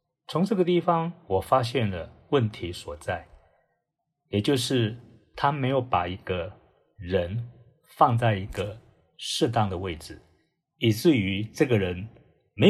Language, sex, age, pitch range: Chinese, male, 50-69, 105-155 Hz